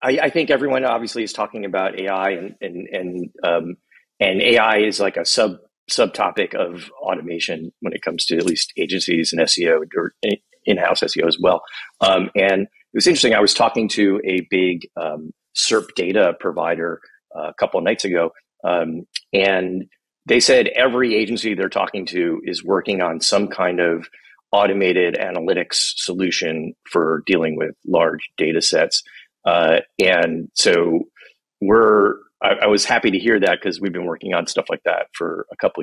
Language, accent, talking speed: English, American, 170 wpm